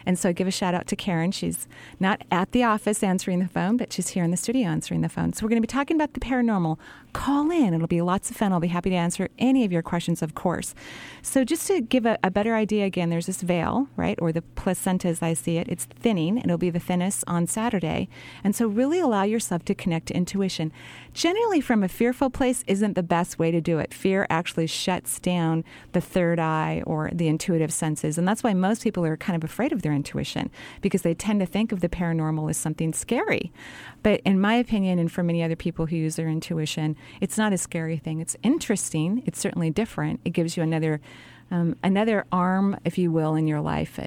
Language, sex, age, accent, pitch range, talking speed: English, female, 40-59, American, 160-205 Hz, 235 wpm